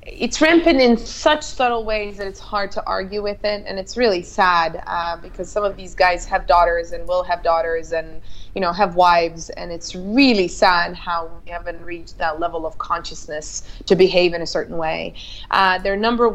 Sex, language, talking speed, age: female, English, 215 wpm, 20-39